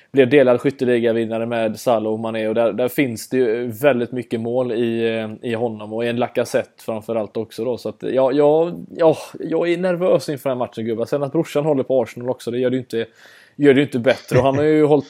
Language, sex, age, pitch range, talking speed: Swedish, male, 20-39, 115-135 Hz, 225 wpm